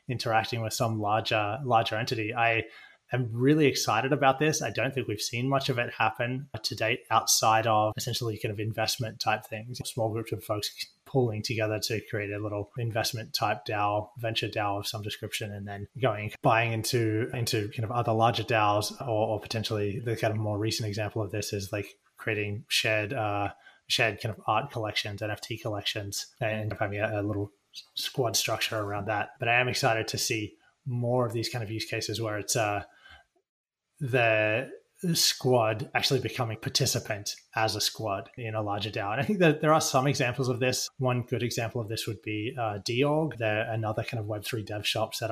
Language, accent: English, Australian